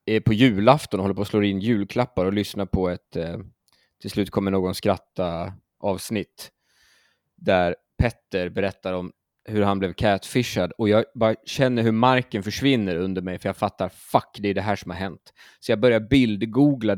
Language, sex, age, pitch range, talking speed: Swedish, male, 20-39, 95-110 Hz, 185 wpm